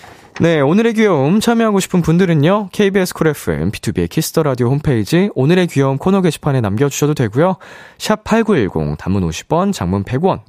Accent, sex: native, male